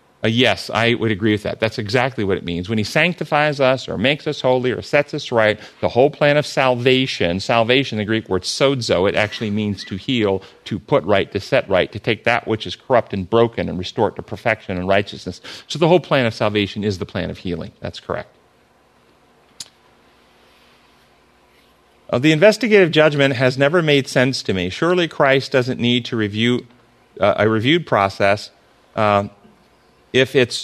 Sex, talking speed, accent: male, 185 wpm, American